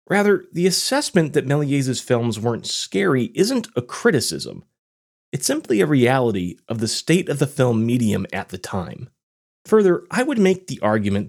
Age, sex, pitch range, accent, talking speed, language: 30-49, male, 110-170 Hz, American, 165 wpm, English